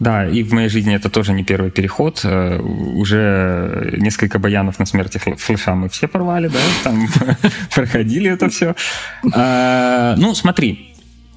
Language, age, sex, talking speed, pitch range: Russian, 20-39, male, 145 wpm, 100-125 Hz